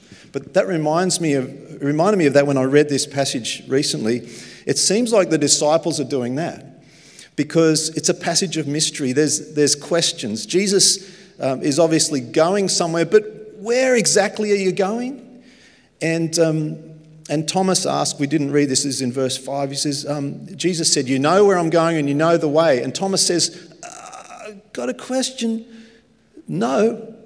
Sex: male